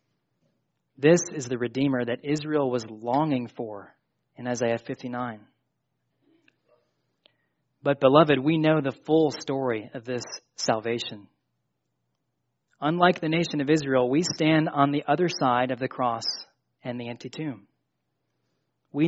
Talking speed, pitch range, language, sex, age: 130 wpm, 120-155 Hz, English, male, 30-49